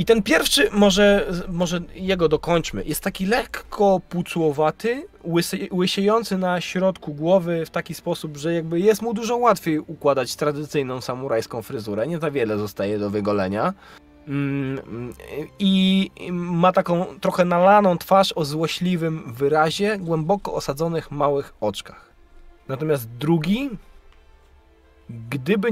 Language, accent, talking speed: Polish, native, 115 wpm